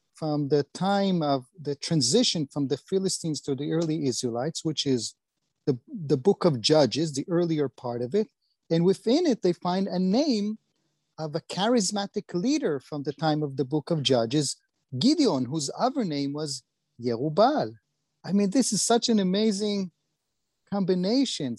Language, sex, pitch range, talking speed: English, male, 145-195 Hz, 160 wpm